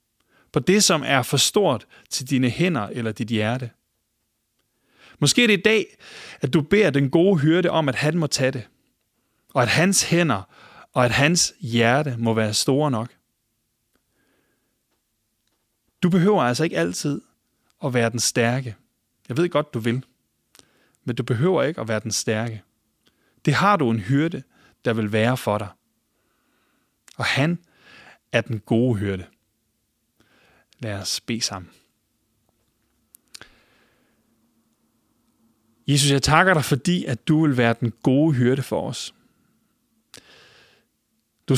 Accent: Danish